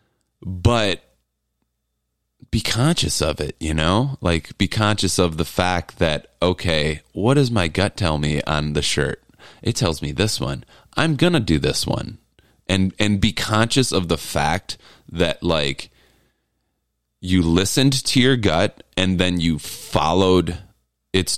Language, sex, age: English, male, 30-49